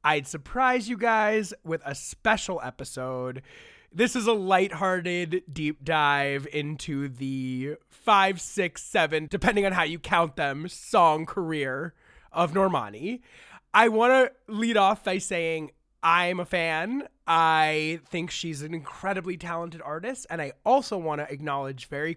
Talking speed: 145 wpm